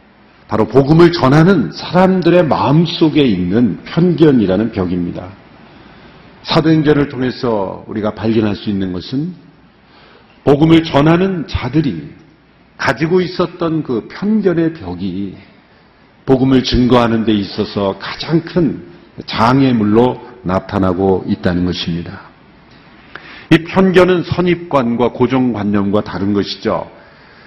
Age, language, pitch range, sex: 50-69, Korean, 110-170 Hz, male